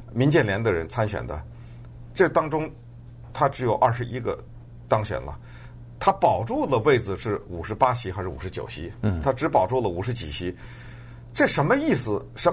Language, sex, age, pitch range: Chinese, male, 50-69, 110-135 Hz